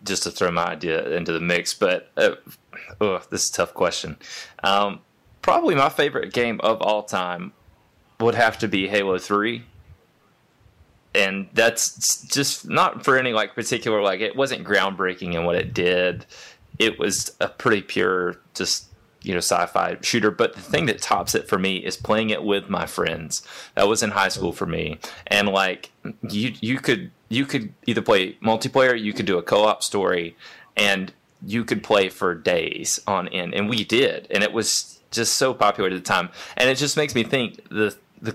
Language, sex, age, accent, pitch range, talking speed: English, male, 20-39, American, 95-120 Hz, 190 wpm